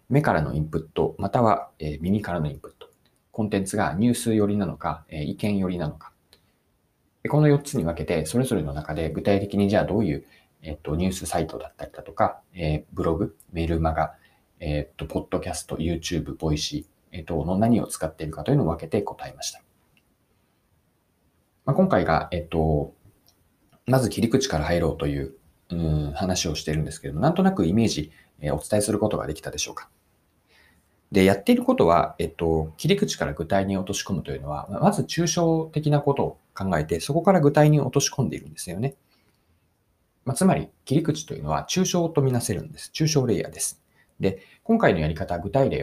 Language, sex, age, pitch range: Japanese, male, 40-59, 80-130 Hz